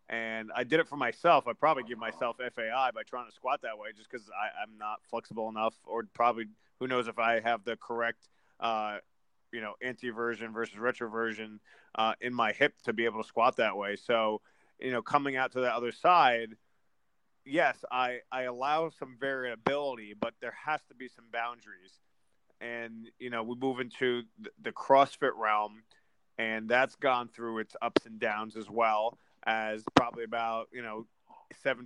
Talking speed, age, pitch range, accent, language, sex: 185 wpm, 30-49, 110-125 Hz, American, English, male